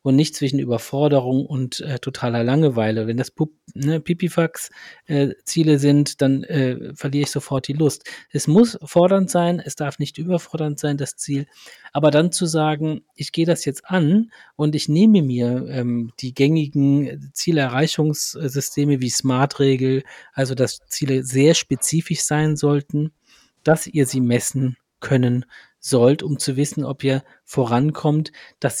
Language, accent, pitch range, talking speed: German, German, 130-160 Hz, 145 wpm